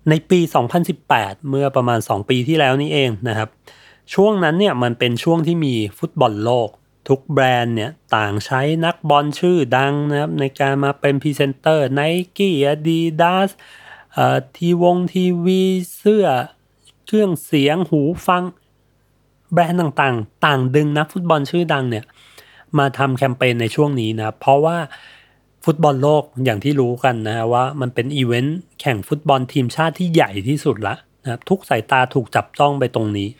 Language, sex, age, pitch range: Thai, male, 30-49, 120-160 Hz